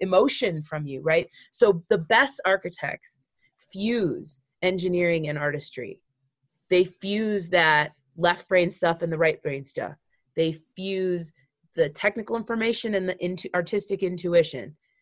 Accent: American